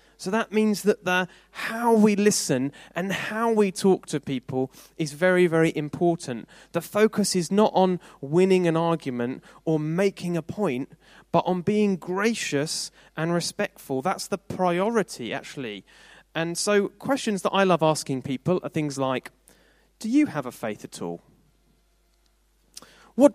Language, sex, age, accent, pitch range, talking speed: English, male, 30-49, British, 140-195 Hz, 150 wpm